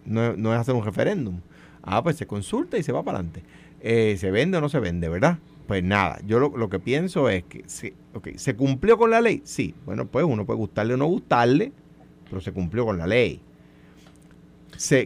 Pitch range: 100-135 Hz